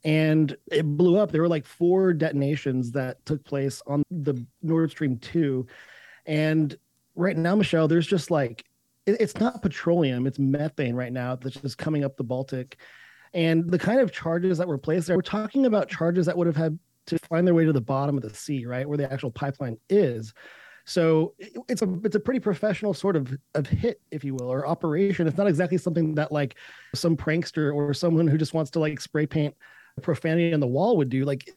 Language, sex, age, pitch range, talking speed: English, male, 30-49, 140-180 Hz, 205 wpm